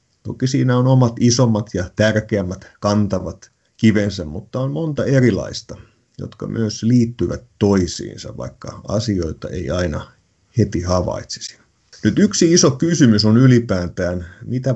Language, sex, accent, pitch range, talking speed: Finnish, male, native, 95-125 Hz, 120 wpm